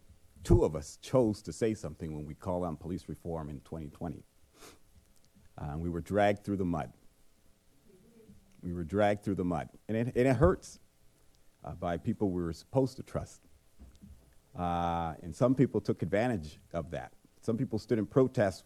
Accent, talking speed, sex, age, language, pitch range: American, 170 wpm, male, 50-69, English, 80-105 Hz